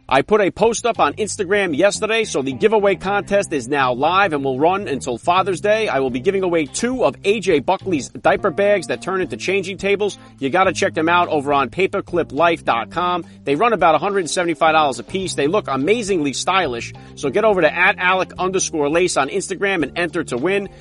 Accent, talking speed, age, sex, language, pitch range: American, 200 wpm, 40-59, male, English, 145-195 Hz